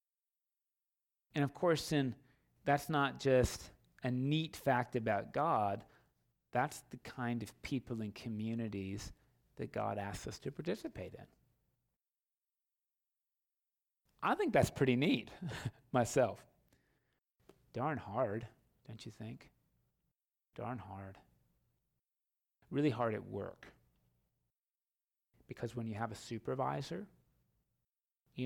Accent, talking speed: American, 105 wpm